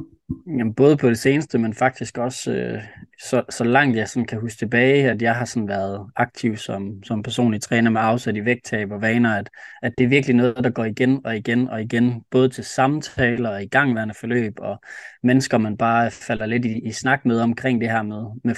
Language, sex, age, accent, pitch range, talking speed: Danish, male, 20-39, native, 115-130 Hz, 220 wpm